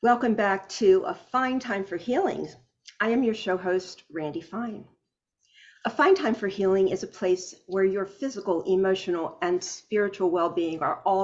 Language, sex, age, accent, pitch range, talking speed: English, female, 50-69, American, 185-230 Hz, 175 wpm